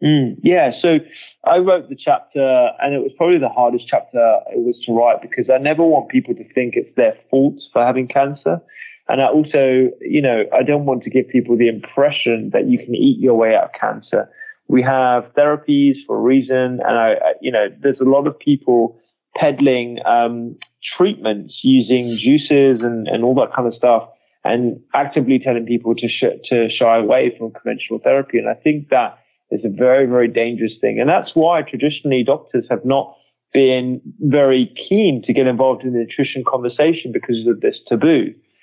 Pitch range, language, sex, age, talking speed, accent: 120-150 Hz, English, male, 20-39, 190 wpm, British